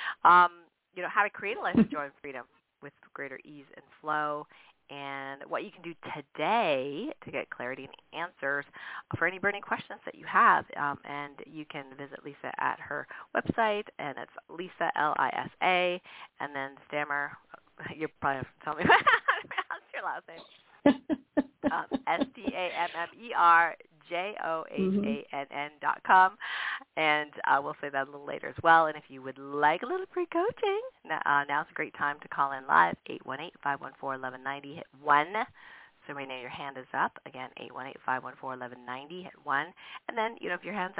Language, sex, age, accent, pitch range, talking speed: English, female, 40-59, American, 140-180 Hz, 165 wpm